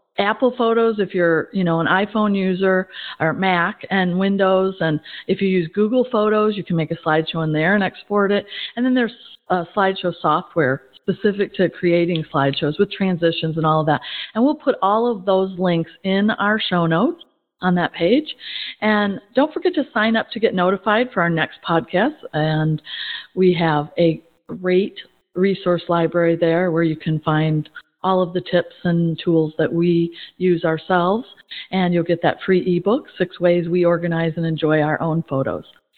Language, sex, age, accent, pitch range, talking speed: English, female, 50-69, American, 165-210 Hz, 180 wpm